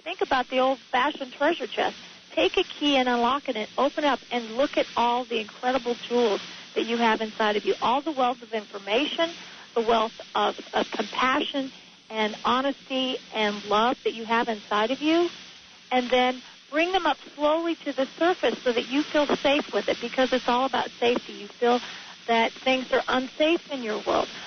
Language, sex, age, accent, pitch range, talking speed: English, female, 40-59, American, 230-280 Hz, 195 wpm